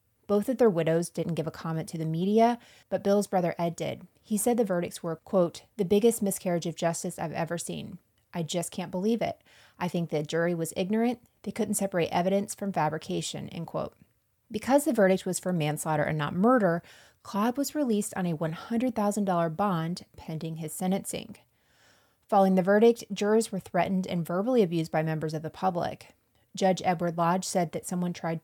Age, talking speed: 30-49, 190 wpm